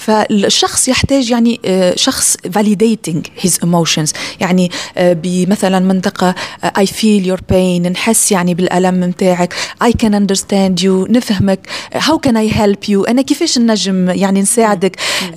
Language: Arabic